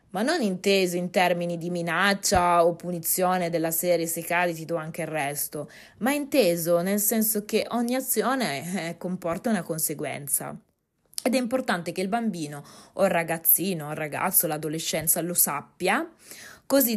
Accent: native